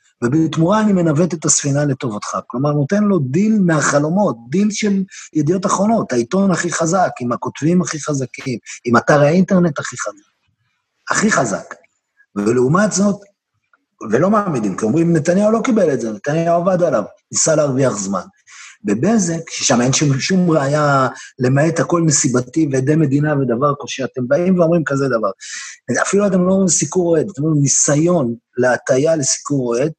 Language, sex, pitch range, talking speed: Hebrew, male, 135-180 Hz, 130 wpm